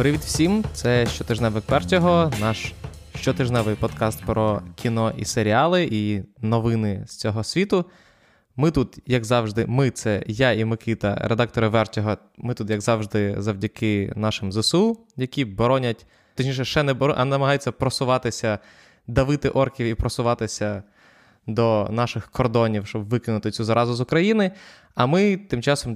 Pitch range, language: 110-135 Hz, Ukrainian